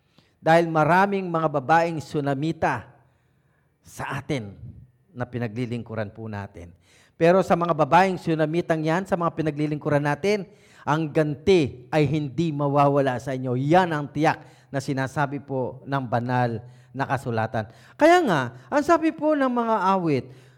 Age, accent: 40-59, Filipino